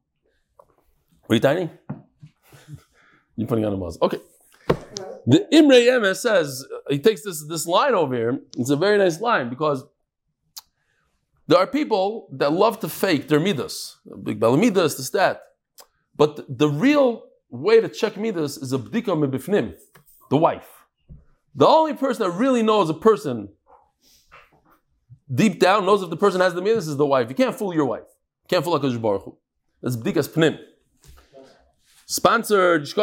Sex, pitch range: male, 135-220 Hz